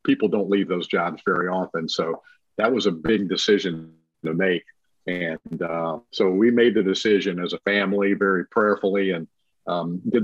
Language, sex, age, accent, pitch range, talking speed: English, male, 50-69, American, 90-105 Hz, 175 wpm